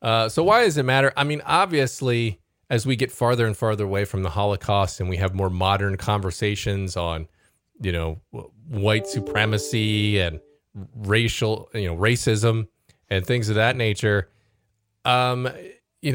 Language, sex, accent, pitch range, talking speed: English, male, American, 95-115 Hz, 155 wpm